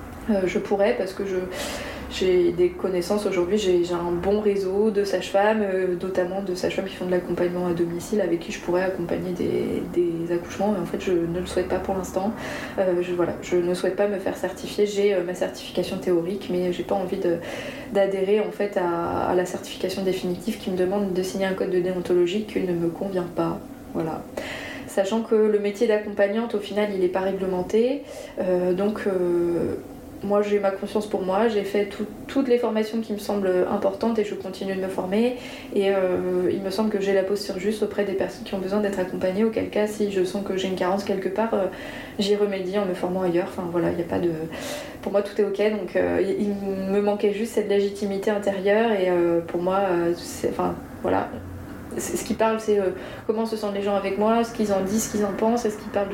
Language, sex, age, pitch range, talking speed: French, female, 20-39, 185-215 Hz, 225 wpm